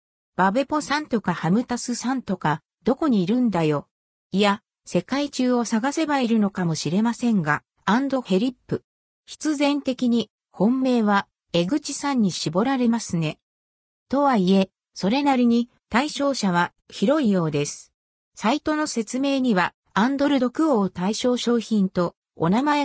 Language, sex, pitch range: Japanese, female, 185-265 Hz